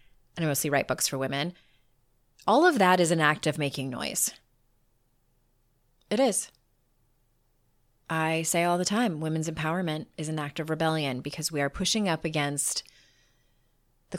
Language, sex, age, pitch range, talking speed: English, female, 30-49, 145-195 Hz, 155 wpm